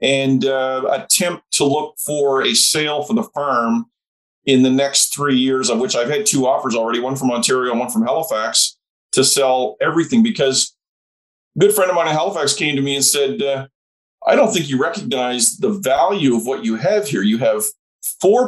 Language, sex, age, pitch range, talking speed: English, male, 40-59, 135-215 Hz, 200 wpm